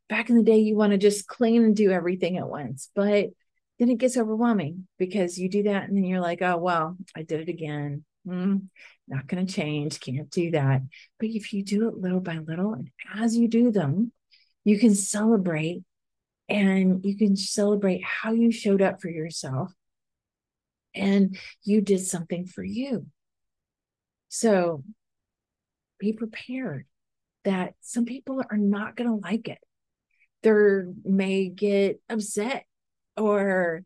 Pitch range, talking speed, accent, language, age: 185-235 Hz, 160 wpm, American, English, 40-59